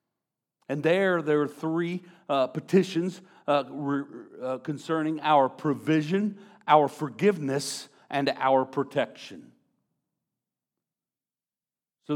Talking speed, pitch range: 90 wpm, 115-165 Hz